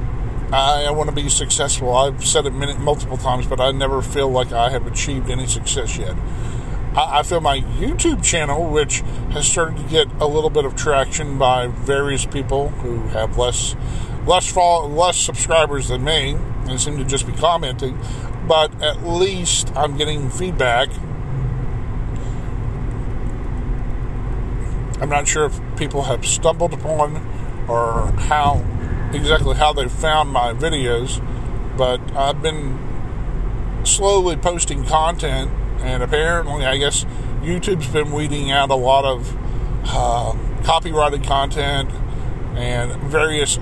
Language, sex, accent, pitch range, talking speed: English, male, American, 120-145 Hz, 135 wpm